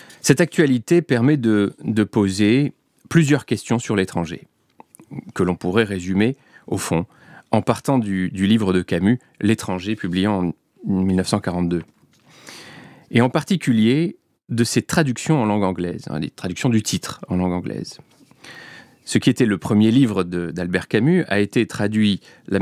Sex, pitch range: male, 95-125 Hz